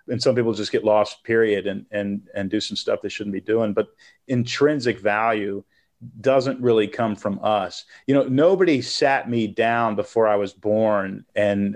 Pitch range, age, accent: 105-130 Hz, 40-59, American